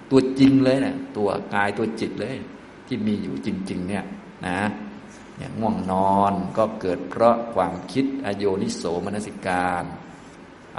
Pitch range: 100-130 Hz